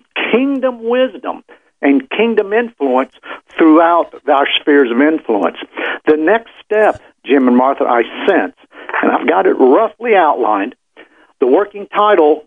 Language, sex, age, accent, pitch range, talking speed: English, male, 50-69, American, 135-210 Hz, 130 wpm